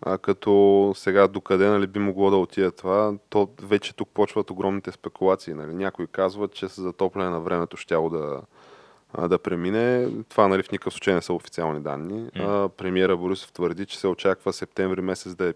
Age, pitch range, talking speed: 20-39, 85-100 Hz, 185 wpm